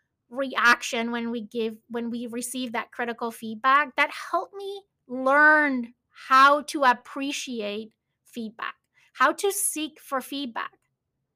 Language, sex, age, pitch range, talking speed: English, female, 30-49, 235-300 Hz, 120 wpm